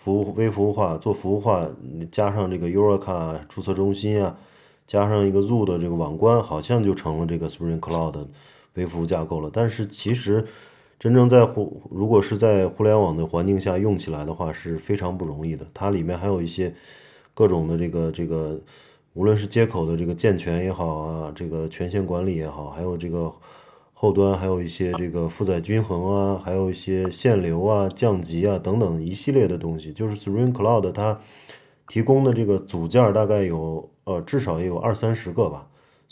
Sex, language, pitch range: male, Chinese, 85-110 Hz